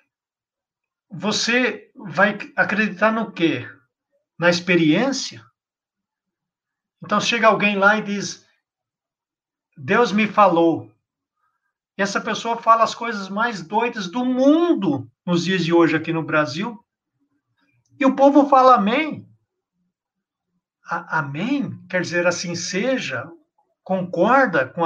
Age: 60-79